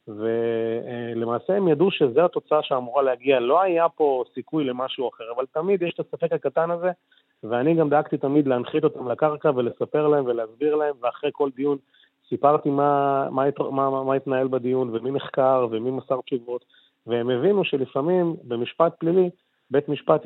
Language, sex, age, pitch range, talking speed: Hebrew, male, 30-49, 120-150 Hz, 160 wpm